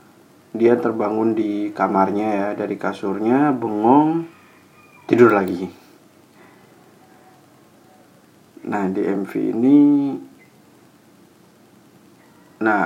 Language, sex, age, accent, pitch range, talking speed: Indonesian, male, 20-39, native, 105-130 Hz, 70 wpm